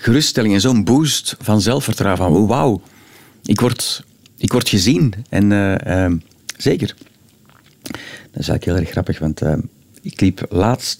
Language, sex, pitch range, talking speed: Dutch, male, 105-130 Hz, 160 wpm